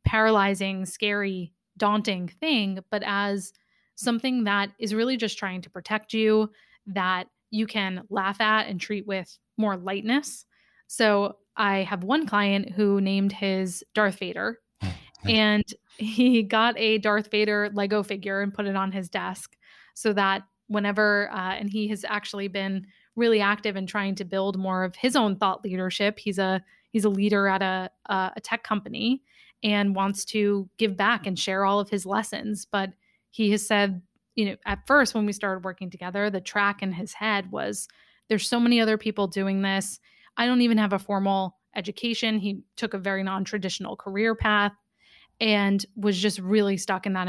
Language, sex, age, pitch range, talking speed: English, female, 20-39, 195-215 Hz, 175 wpm